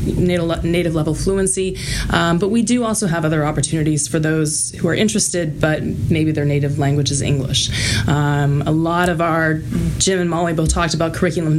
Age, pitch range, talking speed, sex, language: 20-39, 155-185 Hz, 180 wpm, female, English